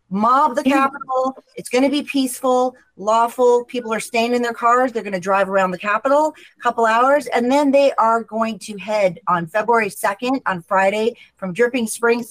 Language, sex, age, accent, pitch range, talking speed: English, female, 30-49, American, 190-240 Hz, 195 wpm